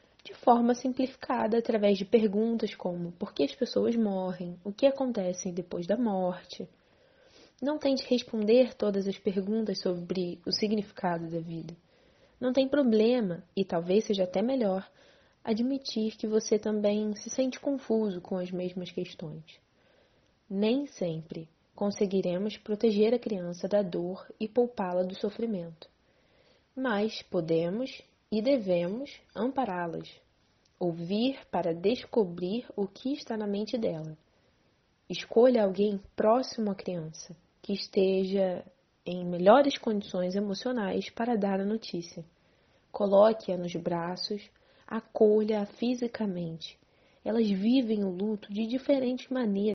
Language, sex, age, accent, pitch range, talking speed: Portuguese, female, 20-39, Brazilian, 180-235 Hz, 120 wpm